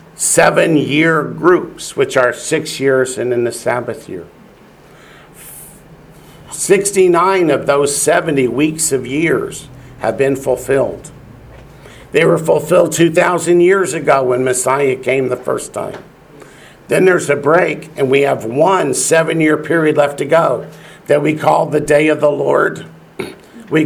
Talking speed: 140 wpm